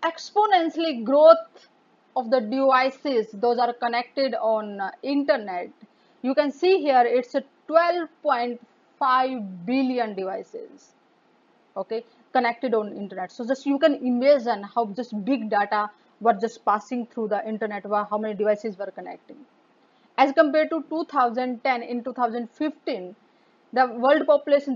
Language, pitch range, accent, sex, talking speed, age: English, 225-285 Hz, Indian, female, 130 wpm, 30-49